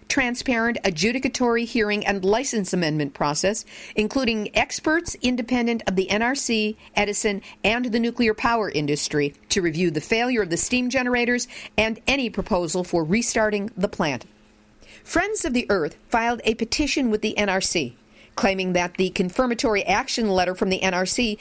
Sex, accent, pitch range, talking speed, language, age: female, American, 180-235 Hz, 150 wpm, English, 50-69